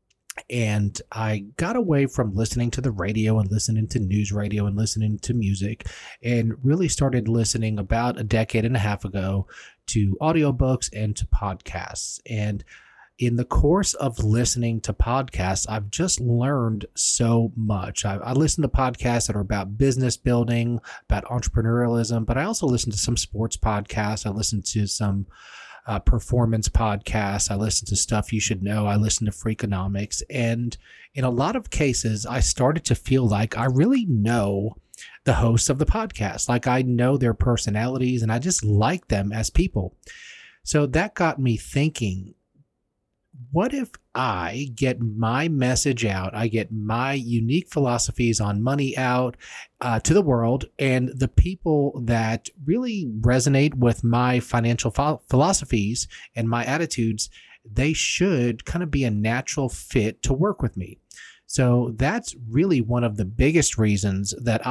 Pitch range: 105-130 Hz